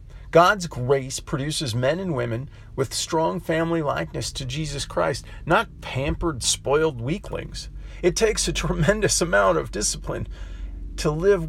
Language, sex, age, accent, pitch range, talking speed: English, male, 40-59, American, 110-140 Hz, 135 wpm